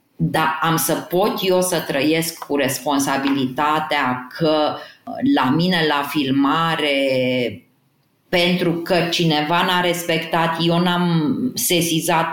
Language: Romanian